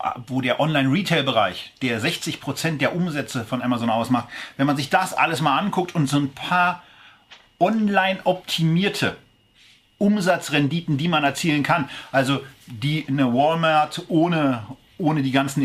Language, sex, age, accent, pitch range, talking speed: German, male, 40-59, German, 130-160 Hz, 135 wpm